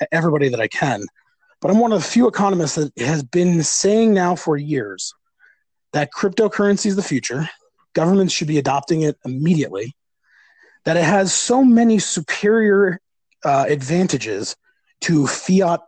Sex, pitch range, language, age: male, 145-195 Hz, English, 30-49